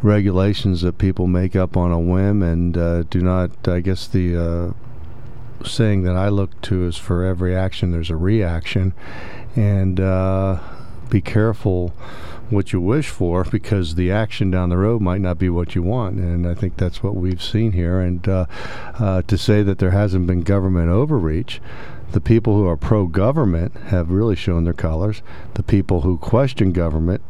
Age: 50-69